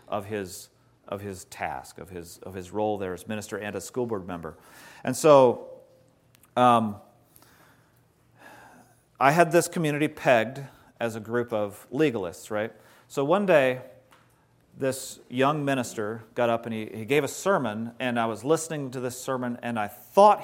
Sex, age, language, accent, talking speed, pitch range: male, 40-59, English, American, 165 wpm, 105-150 Hz